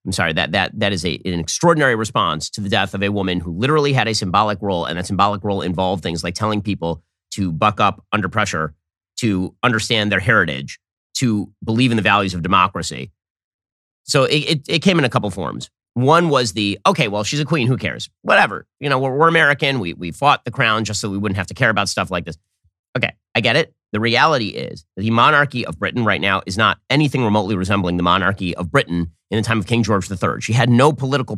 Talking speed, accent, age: 235 wpm, American, 30-49